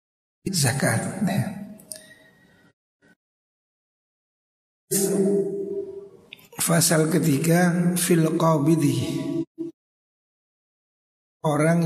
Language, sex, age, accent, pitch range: Indonesian, male, 60-79, native, 155-195 Hz